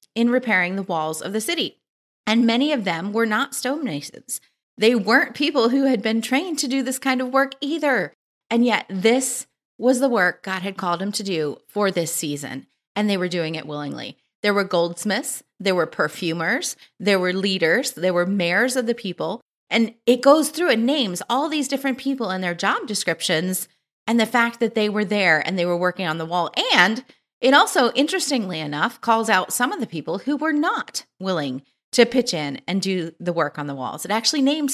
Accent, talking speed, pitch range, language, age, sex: American, 205 wpm, 180-260 Hz, English, 30-49, female